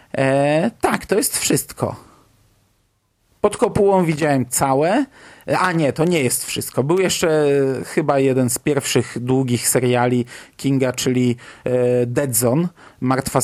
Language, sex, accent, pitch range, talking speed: Polish, male, native, 125-160 Hz, 120 wpm